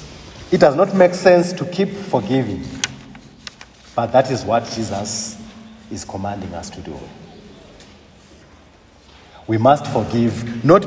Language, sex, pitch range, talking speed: English, male, 110-175 Hz, 120 wpm